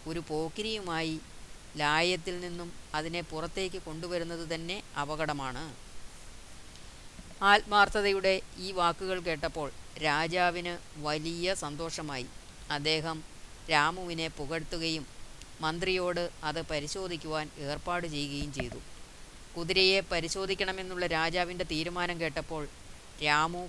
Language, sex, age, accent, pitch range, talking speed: Malayalam, female, 30-49, native, 150-175 Hz, 80 wpm